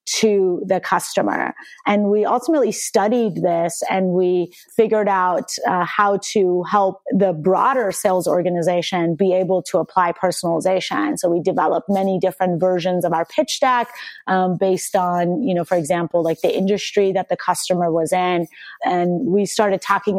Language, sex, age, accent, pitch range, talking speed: English, female, 30-49, American, 180-210 Hz, 160 wpm